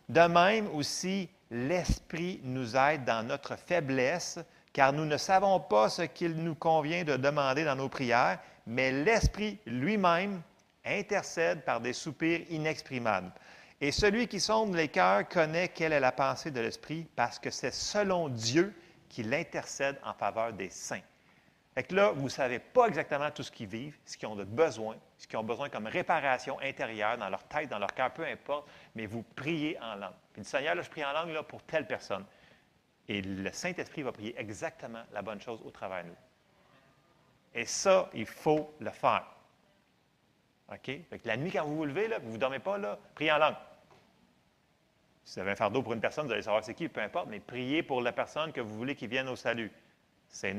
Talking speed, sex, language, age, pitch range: 200 wpm, male, French, 40-59, 120-170 Hz